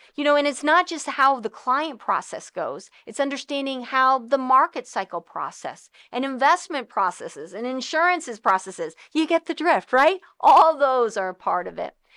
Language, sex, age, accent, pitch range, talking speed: English, female, 40-59, American, 225-290 Hz, 180 wpm